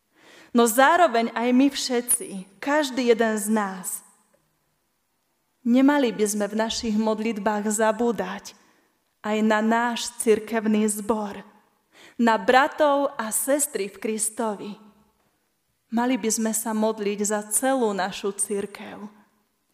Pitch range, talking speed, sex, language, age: 210-255 Hz, 110 wpm, female, Slovak, 20-39